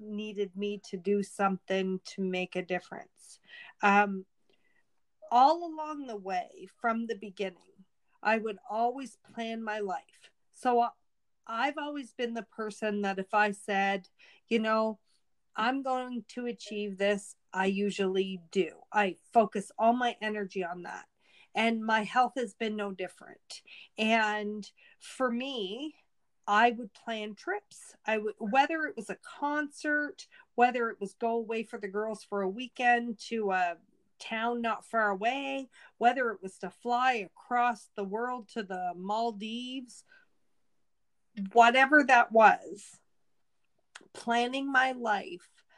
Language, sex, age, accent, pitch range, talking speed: English, female, 40-59, American, 205-245 Hz, 140 wpm